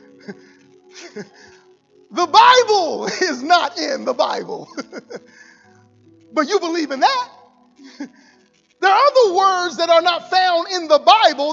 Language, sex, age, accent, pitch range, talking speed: English, male, 40-59, American, 310-415 Hz, 120 wpm